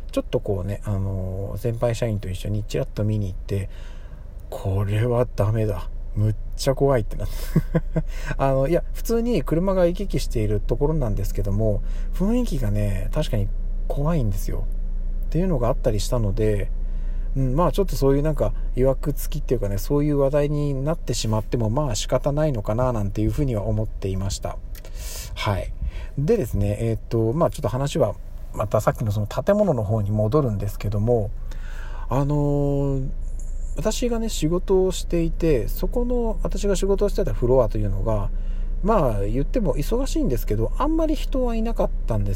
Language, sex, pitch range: Japanese, male, 100-155 Hz